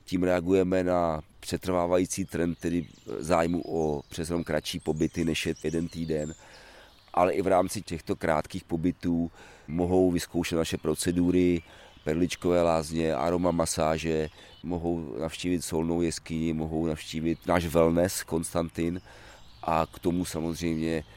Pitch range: 80-90 Hz